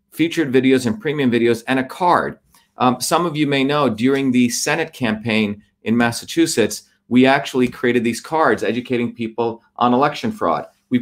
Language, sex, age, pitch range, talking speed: English, male, 40-59, 115-140 Hz, 170 wpm